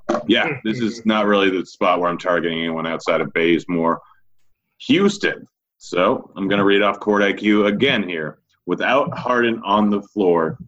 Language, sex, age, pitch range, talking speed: English, male, 30-49, 90-105 Hz, 170 wpm